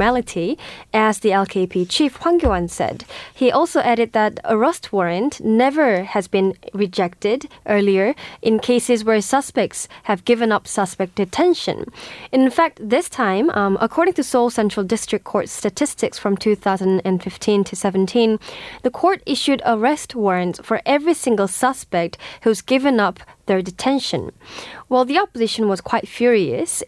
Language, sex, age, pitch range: Korean, female, 10-29, 195-255 Hz